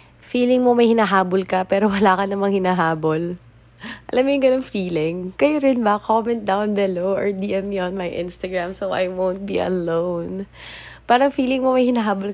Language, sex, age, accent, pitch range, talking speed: English, female, 20-39, Filipino, 175-205 Hz, 175 wpm